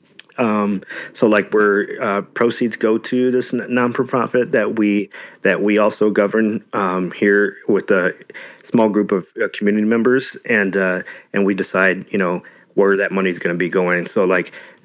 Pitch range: 95-110 Hz